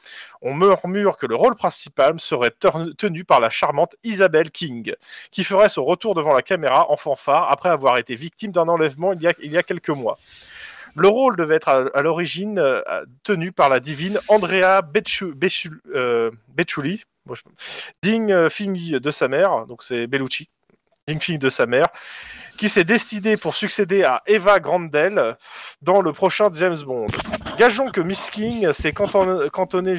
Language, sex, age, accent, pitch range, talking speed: French, male, 30-49, French, 155-205 Hz, 170 wpm